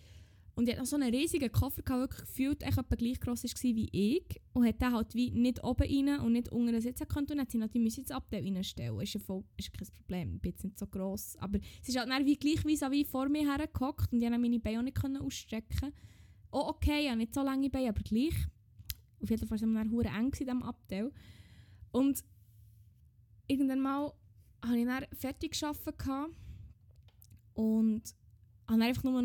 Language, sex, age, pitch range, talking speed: German, female, 10-29, 225-325 Hz, 200 wpm